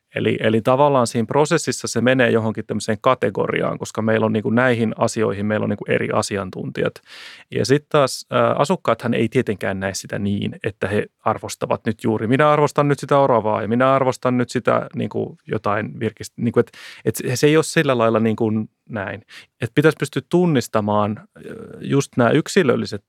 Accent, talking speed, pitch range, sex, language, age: native, 170 wpm, 115-145 Hz, male, Finnish, 30-49